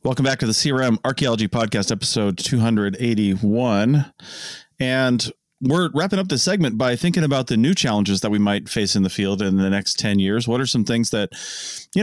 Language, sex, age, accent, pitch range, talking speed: English, male, 30-49, American, 100-135 Hz, 195 wpm